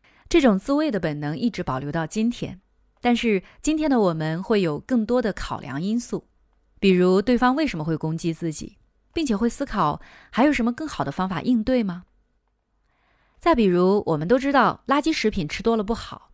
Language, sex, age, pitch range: Chinese, female, 30-49, 165-240 Hz